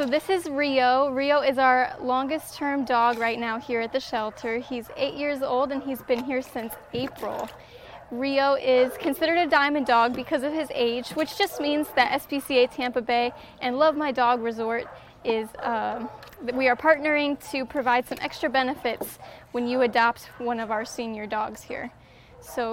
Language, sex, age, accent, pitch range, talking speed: English, female, 10-29, American, 235-280 Hz, 180 wpm